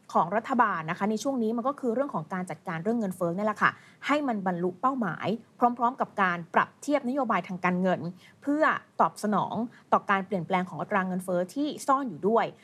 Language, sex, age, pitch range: Thai, female, 20-39, 185-235 Hz